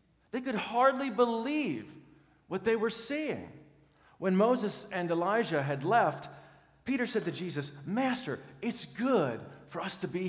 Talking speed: 145 wpm